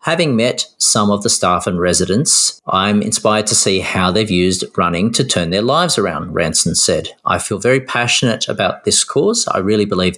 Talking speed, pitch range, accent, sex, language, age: 195 wpm, 90-120 Hz, Australian, male, English, 30-49